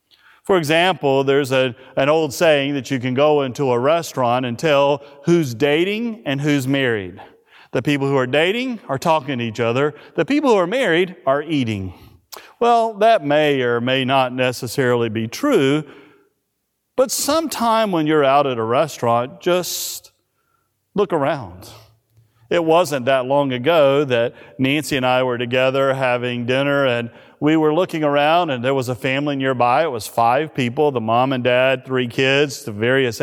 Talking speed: 170 wpm